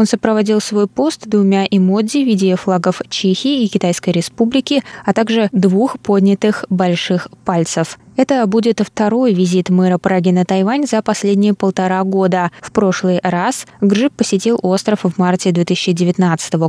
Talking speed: 145 wpm